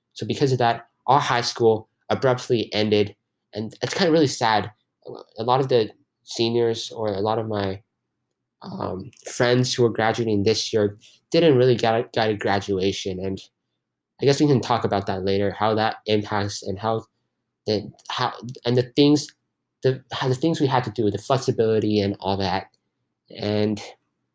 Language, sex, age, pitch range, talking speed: English, male, 20-39, 100-120 Hz, 175 wpm